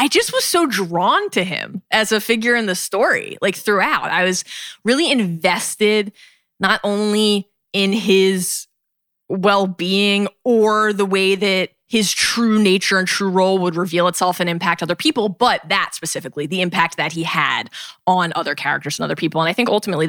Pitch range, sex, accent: 175-230 Hz, female, American